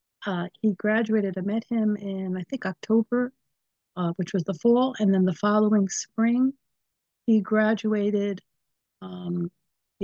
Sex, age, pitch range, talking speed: female, 50-69, 190-230 Hz, 145 wpm